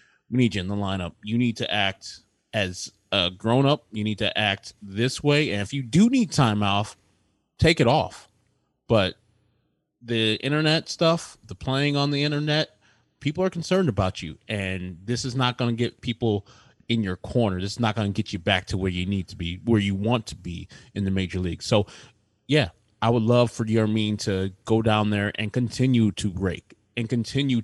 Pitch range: 100-130 Hz